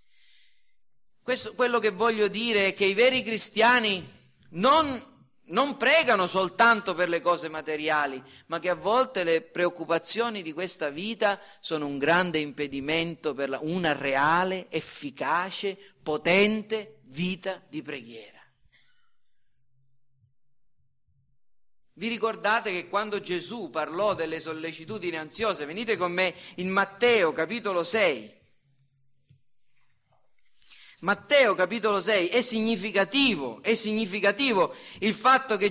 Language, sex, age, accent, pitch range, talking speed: Italian, male, 40-59, native, 180-240 Hz, 110 wpm